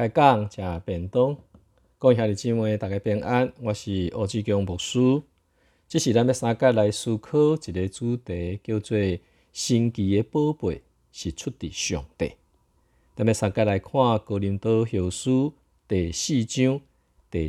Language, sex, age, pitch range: Chinese, male, 50-69, 85-115 Hz